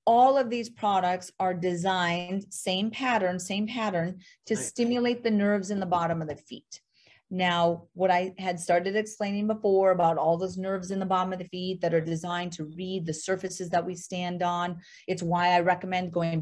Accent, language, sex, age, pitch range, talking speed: American, English, female, 30-49, 175-210 Hz, 195 wpm